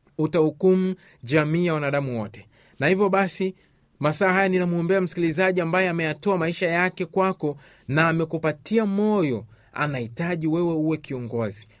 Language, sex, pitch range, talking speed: Swahili, male, 145-190 Hz, 115 wpm